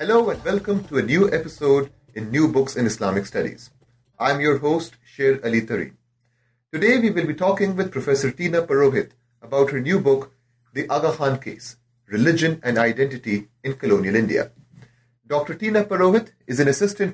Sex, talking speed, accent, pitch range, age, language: male, 170 wpm, Indian, 120-165 Hz, 30-49, English